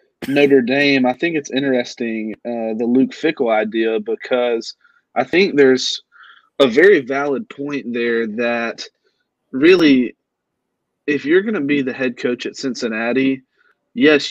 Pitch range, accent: 120-150 Hz, American